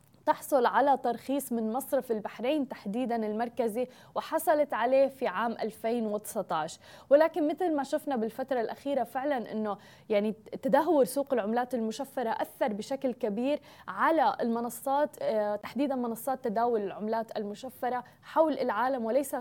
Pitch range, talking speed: 225-275 Hz, 120 wpm